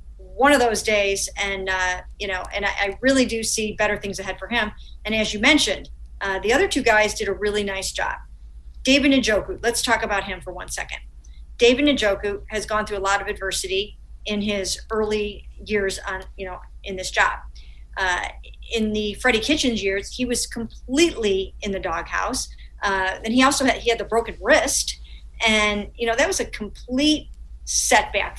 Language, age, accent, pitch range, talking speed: English, 50-69, American, 195-230 Hz, 190 wpm